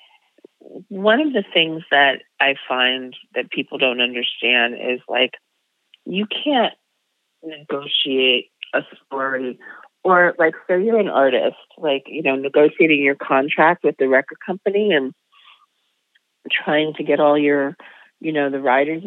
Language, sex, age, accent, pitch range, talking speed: English, female, 40-59, American, 140-215 Hz, 140 wpm